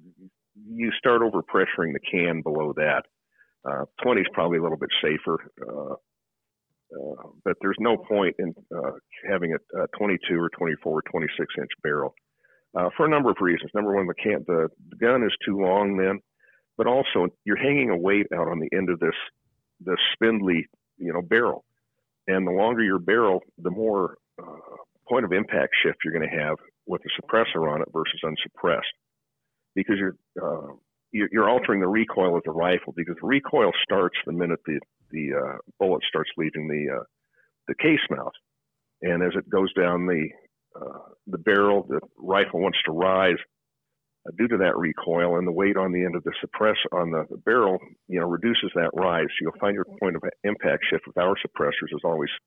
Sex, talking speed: male, 185 wpm